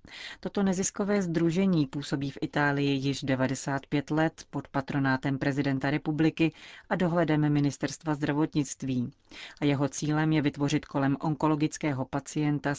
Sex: female